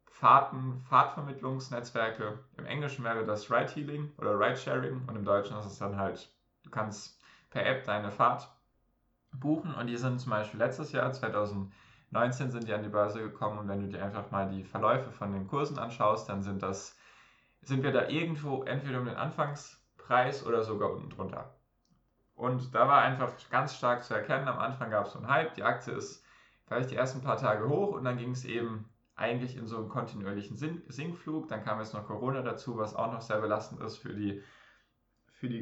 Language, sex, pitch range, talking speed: German, male, 105-130 Hz, 195 wpm